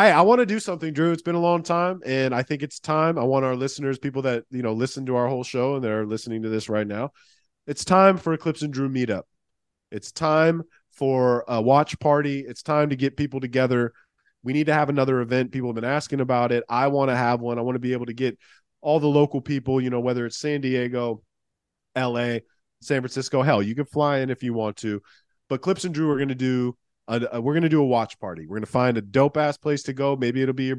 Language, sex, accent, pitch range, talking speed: English, male, American, 125-150 Hz, 255 wpm